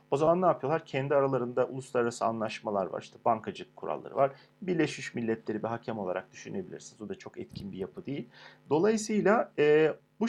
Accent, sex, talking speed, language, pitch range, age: native, male, 170 wpm, Turkish, 125-175 Hz, 40-59